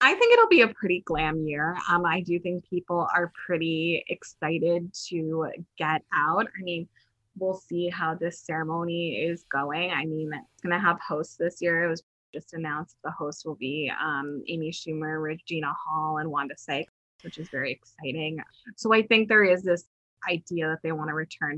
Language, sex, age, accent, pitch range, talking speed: English, female, 20-39, American, 155-180 Hz, 190 wpm